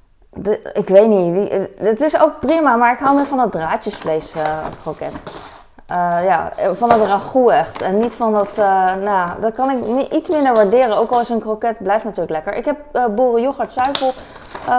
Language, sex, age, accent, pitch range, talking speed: Dutch, female, 20-39, Dutch, 190-265 Hz, 205 wpm